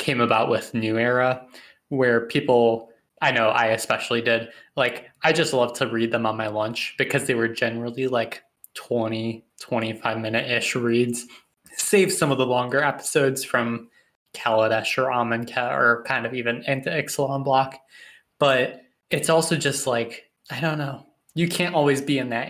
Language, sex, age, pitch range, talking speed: English, male, 20-39, 115-140 Hz, 165 wpm